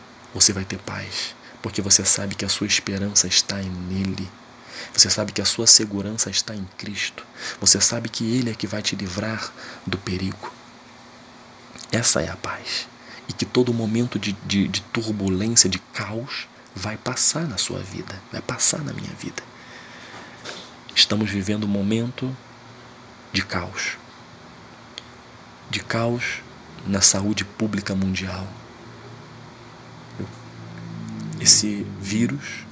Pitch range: 95-120 Hz